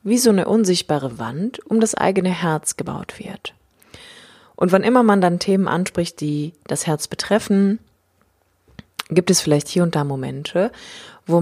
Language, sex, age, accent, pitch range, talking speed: German, female, 30-49, German, 155-195 Hz, 160 wpm